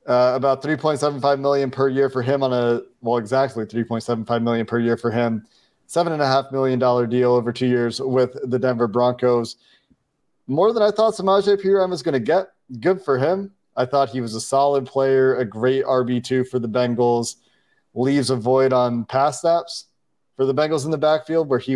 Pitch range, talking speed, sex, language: 125-145 Hz, 220 wpm, male, English